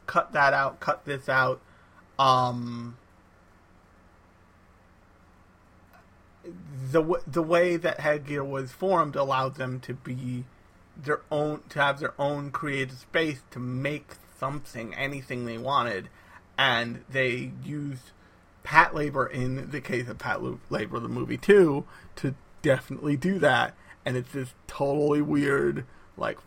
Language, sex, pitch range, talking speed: English, male, 95-150 Hz, 130 wpm